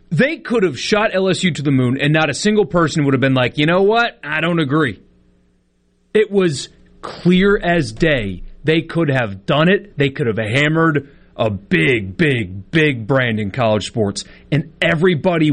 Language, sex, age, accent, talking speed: English, male, 30-49, American, 180 wpm